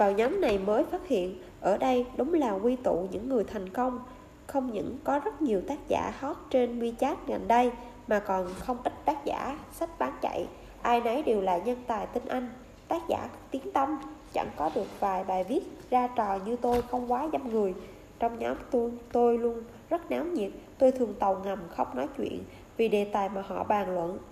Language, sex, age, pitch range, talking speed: Vietnamese, female, 20-39, 205-260 Hz, 205 wpm